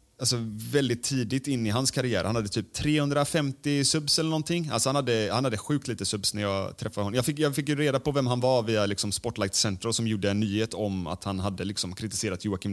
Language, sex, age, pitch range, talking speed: Swedish, male, 30-49, 100-130 Hz, 240 wpm